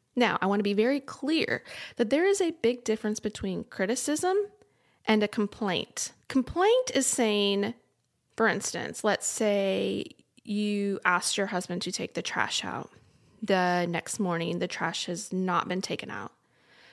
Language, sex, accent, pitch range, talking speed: English, female, American, 185-225 Hz, 155 wpm